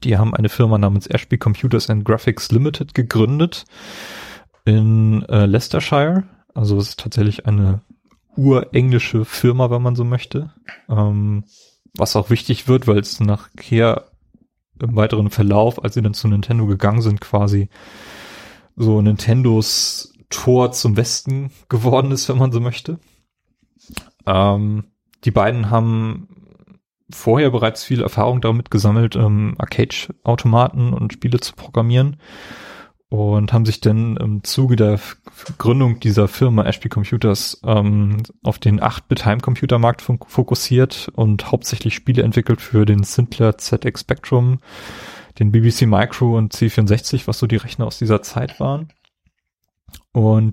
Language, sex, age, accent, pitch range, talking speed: German, male, 30-49, German, 105-125 Hz, 135 wpm